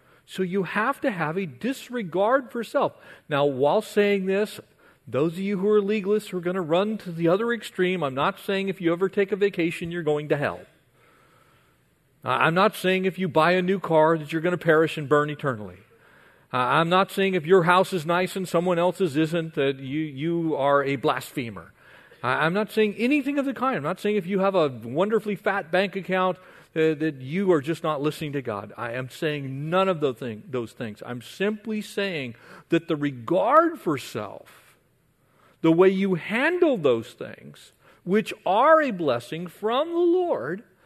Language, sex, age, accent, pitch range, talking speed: English, male, 40-59, American, 155-225 Hz, 195 wpm